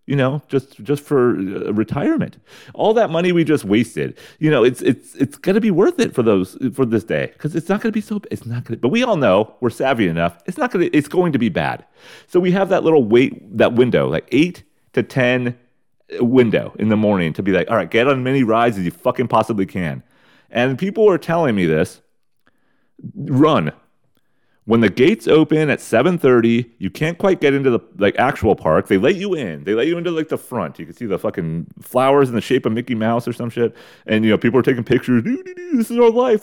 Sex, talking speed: male, 235 wpm